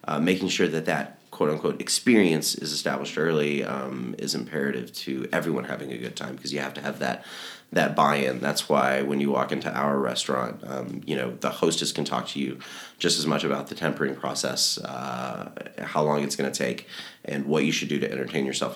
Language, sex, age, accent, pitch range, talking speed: English, male, 30-49, American, 65-75 Hz, 210 wpm